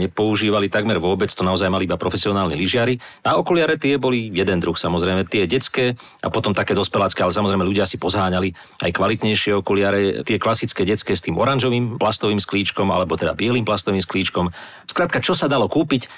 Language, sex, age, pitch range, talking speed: Slovak, male, 40-59, 95-110 Hz, 180 wpm